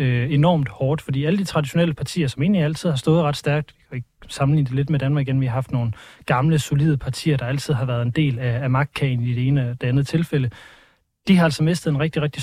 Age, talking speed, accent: 30-49, 235 wpm, native